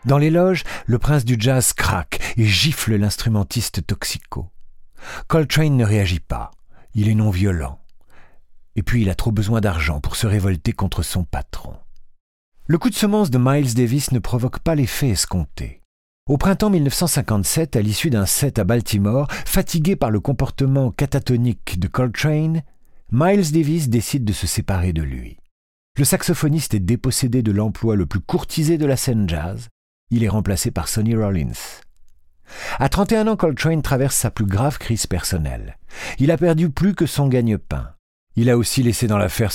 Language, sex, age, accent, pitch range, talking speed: French, male, 50-69, French, 95-140 Hz, 165 wpm